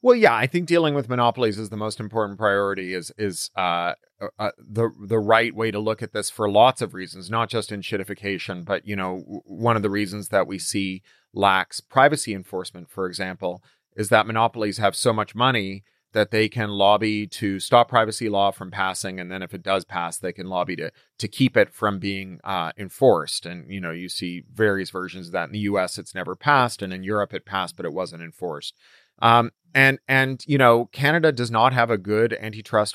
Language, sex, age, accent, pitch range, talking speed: English, male, 30-49, American, 100-125 Hz, 215 wpm